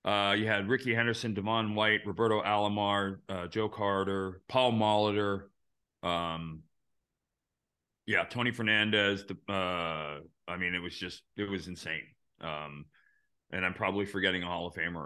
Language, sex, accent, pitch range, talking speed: English, male, American, 90-110 Hz, 145 wpm